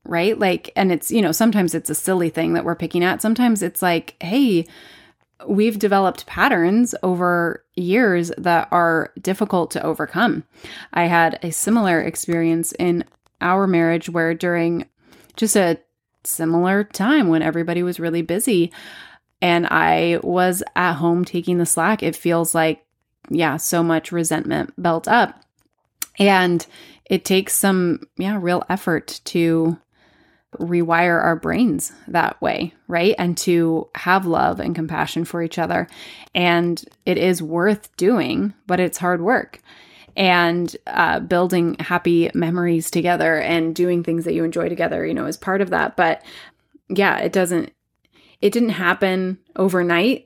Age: 20-39